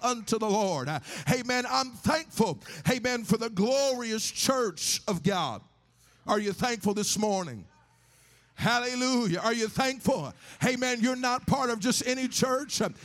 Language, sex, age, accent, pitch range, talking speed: English, male, 50-69, American, 200-235 Hz, 140 wpm